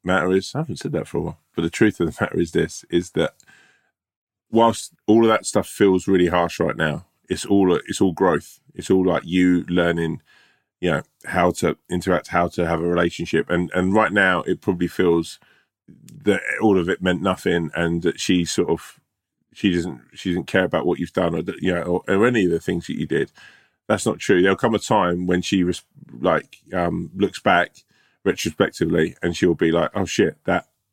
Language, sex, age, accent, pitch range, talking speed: English, male, 20-39, British, 85-100 Hz, 215 wpm